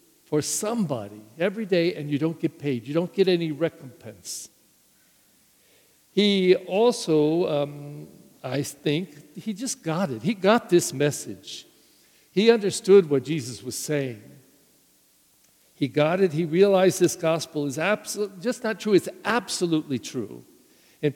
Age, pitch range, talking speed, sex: 60-79, 150-200 Hz, 135 wpm, male